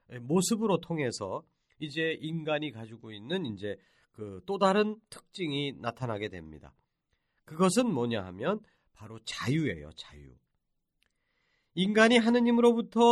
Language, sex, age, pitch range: Korean, male, 40-59, 135-200 Hz